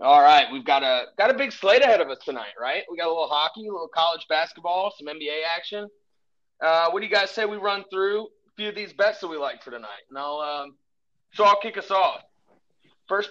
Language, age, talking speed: English, 30-49, 245 wpm